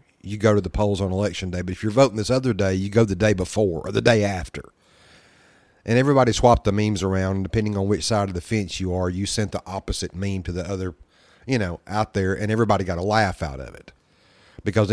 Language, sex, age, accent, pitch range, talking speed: English, male, 40-59, American, 95-115 Hz, 245 wpm